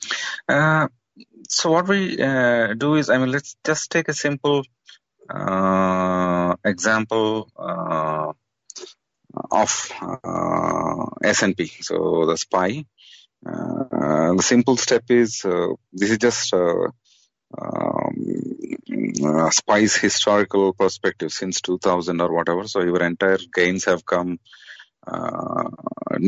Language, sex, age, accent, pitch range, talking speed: English, male, 30-49, Indian, 85-115 Hz, 110 wpm